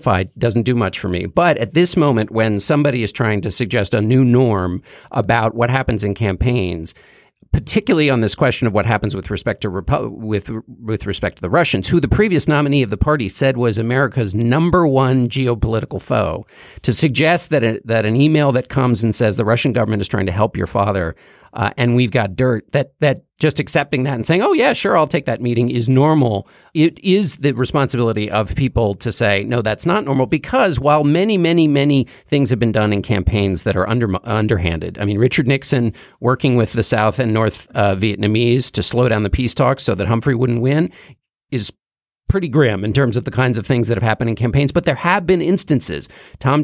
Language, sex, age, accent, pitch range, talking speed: English, male, 50-69, American, 110-140 Hz, 215 wpm